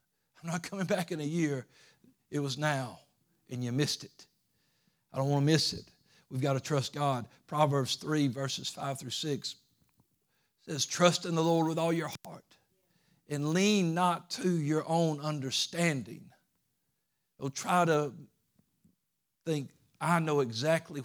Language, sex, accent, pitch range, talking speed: English, male, American, 120-155 Hz, 155 wpm